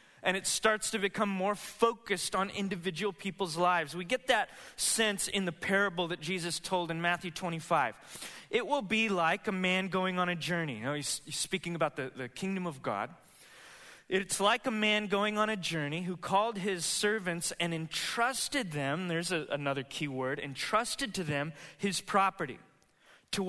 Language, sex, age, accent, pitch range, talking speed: English, male, 20-39, American, 150-195 Hz, 175 wpm